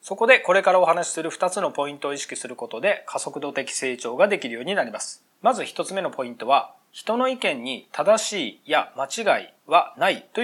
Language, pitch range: Japanese, 155-240 Hz